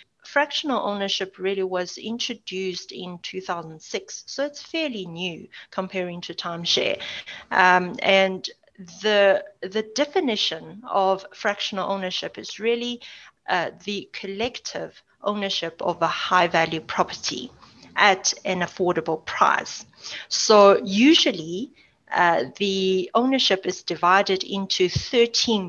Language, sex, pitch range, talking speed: English, female, 180-230 Hz, 105 wpm